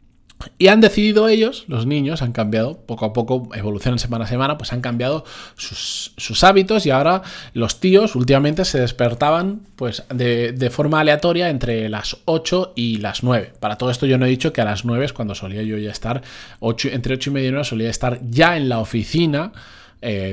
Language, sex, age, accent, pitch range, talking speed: Spanish, male, 20-39, Spanish, 120-170 Hz, 205 wpm